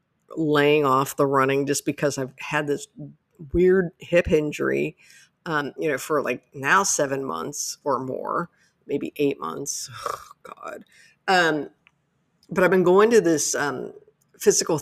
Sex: female